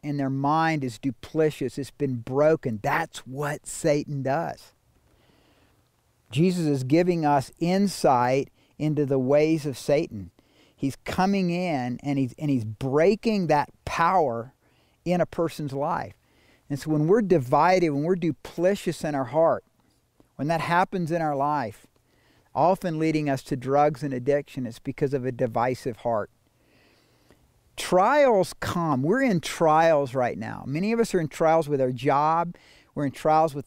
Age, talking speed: 50-69, 155 wpm